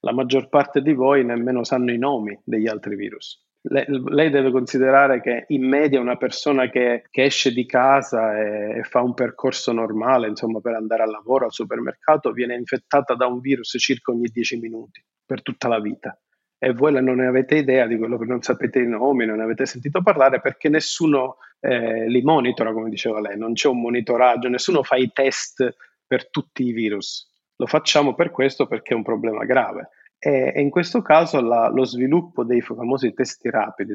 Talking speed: 195 wpm